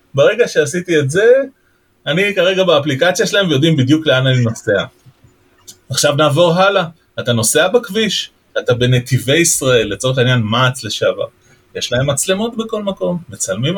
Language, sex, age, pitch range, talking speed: Hebrew, male, 30-49, 130-200 Hz, 140 wpm